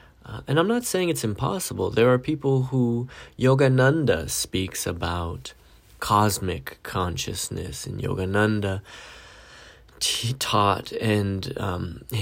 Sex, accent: male, American